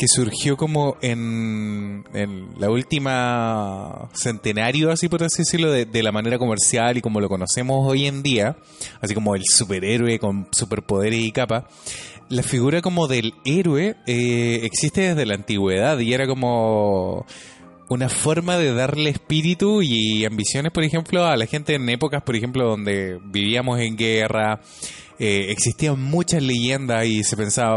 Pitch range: 110-150 Hz